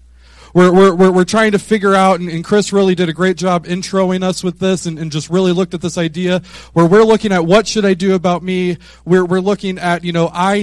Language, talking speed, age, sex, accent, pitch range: English, 250 wpm, 30-49, male, American, 145-190 Hz